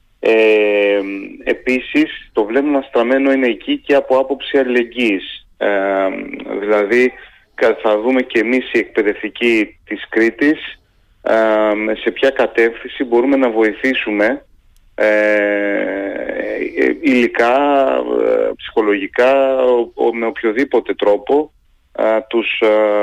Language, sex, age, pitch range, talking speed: Greek, male, 30-49, 105-135 Hz, 100 wpm